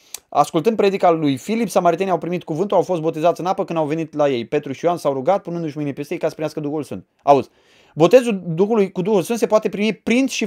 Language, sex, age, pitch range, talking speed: Romanian, male, 20-39, 170-230 Hz, 245 wpm